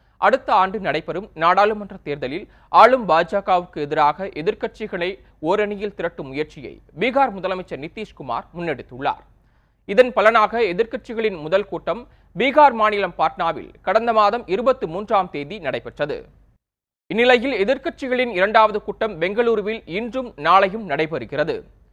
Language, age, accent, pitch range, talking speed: Tamil, 30-49, native, 180-230 Hz, 100 wpm